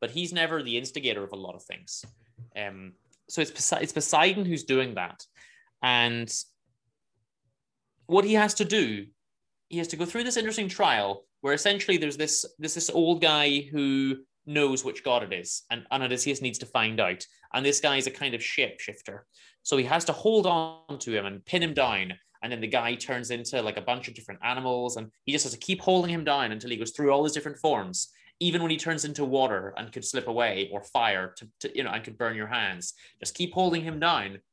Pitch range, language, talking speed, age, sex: 110-150 Hz, English, 220 wpm, 30-49, male